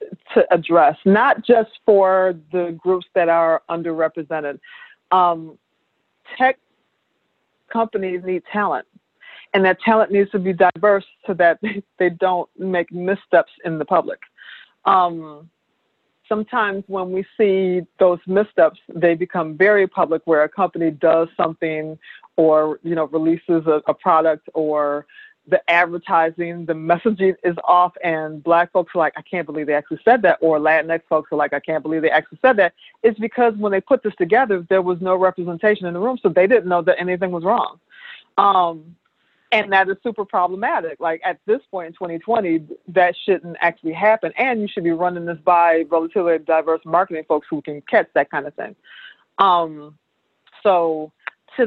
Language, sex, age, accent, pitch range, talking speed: English, female, 40-59, American, 165-200 Hz, 170 wpm